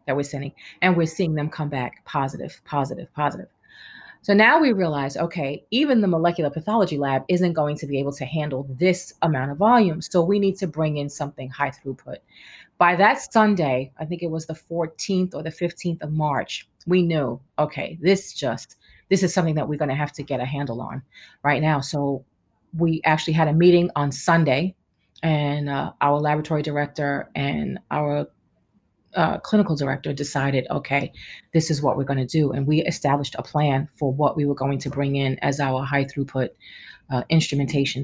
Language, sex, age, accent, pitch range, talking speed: English, female, 30-49, American, 140-175 Hz, 190 wpm